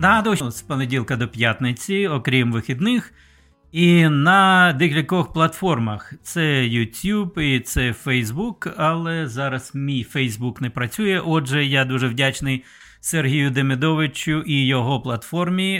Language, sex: Ukrainian, male